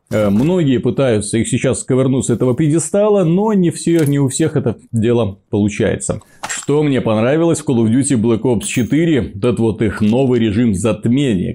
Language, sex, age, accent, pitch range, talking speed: Russian, male, 30-49, native, 110-145 Hz, 175 wpm